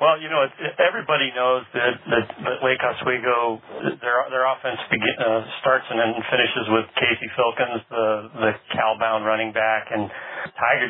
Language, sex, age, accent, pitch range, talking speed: English, male, 40-59, American, 110-120 Hz, 165 wpm